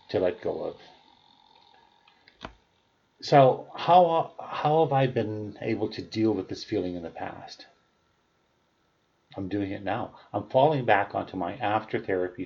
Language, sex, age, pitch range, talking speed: English, male, 40-59, 95-140 Hz, 145 wpm